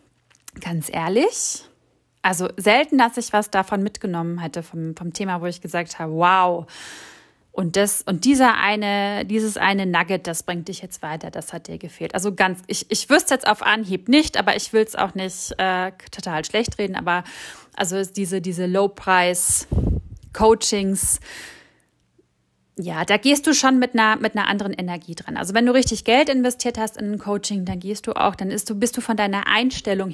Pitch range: 185-230 Hz